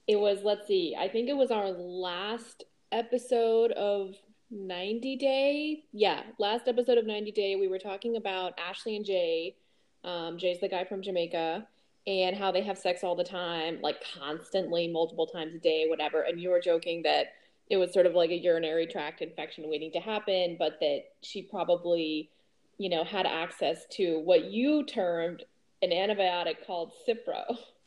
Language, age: English, 20-39